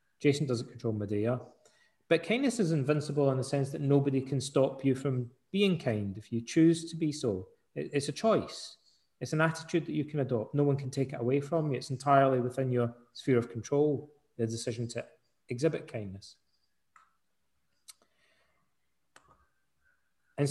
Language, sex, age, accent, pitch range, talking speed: English, male, 30-49, British, 120-155 Hz, 165 wpm